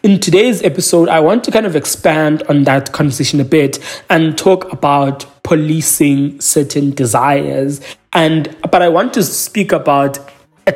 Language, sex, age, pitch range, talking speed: English, male, 20-39, 140-175 Hz, 155 wpm